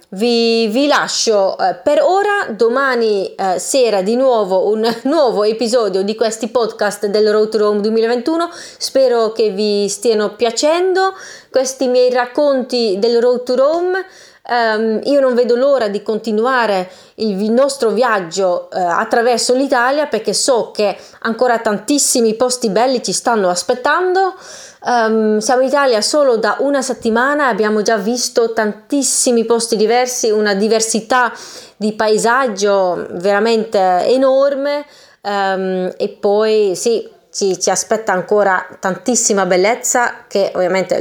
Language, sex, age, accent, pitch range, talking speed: Italian, female, 30-49, native, 205-255 Hz, 125 wpm